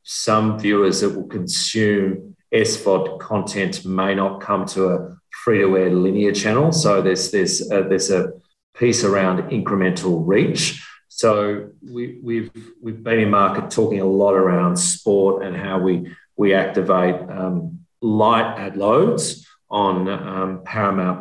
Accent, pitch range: Australian, 95-115 Hz